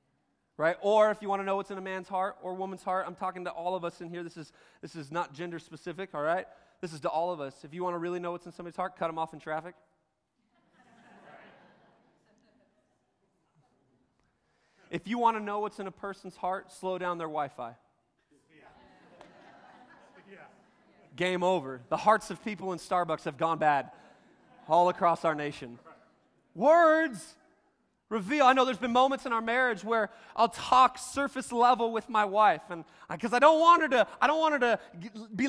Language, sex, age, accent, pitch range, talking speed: English, male, 20-39, American, 180-265 Hz, 190 wpm